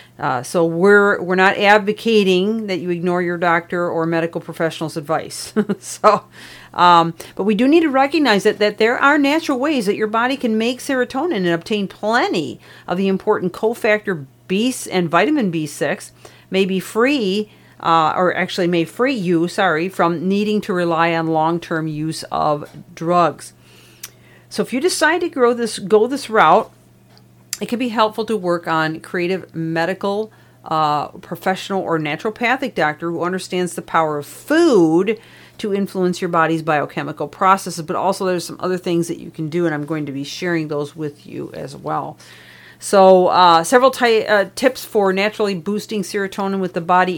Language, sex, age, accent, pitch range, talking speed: English, female, 50-69, American, 165-215 Hz, 170 wpm